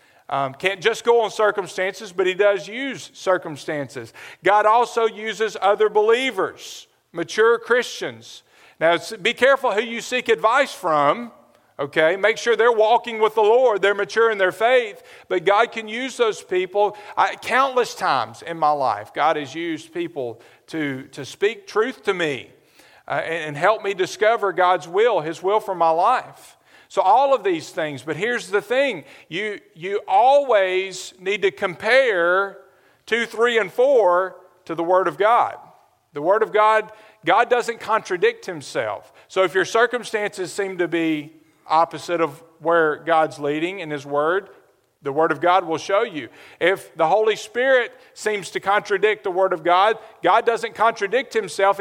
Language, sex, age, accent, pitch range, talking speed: English, male, 50-69, American, 180-235 Hz, 165 wpm